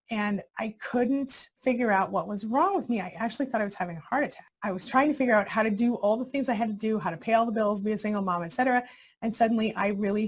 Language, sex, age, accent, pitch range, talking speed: English, female, 30-49, American, 200-250 Hz, 300 wpm